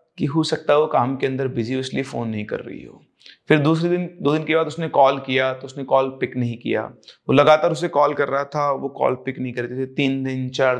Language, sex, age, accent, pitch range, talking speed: Hindi, male, 30-49, native, 130-175 Hz, 265 wpm